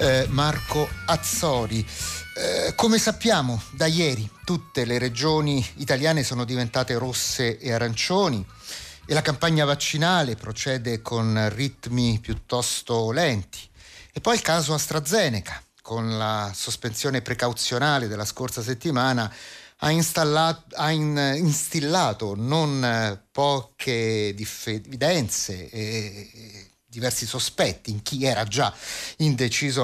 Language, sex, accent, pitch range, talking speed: Italian, male, native, 115-150 Hz, 105 wpm